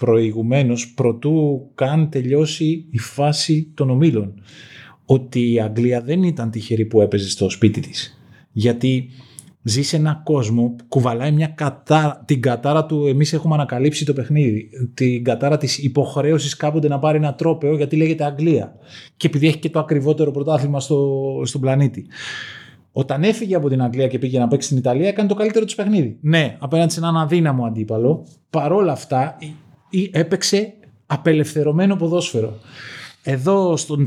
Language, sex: Greek, male